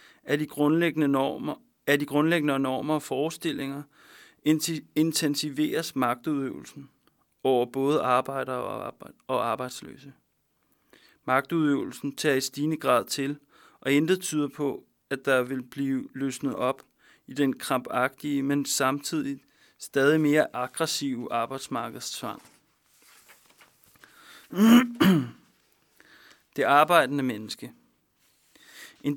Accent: native